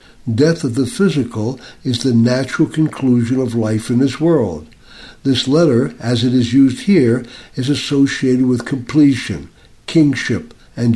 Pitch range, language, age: 115-135 Hz, English, 60-79